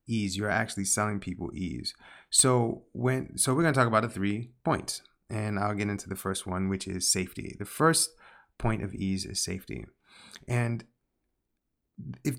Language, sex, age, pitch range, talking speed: English, male, 30-49, 95-120 Hz, 175 wpm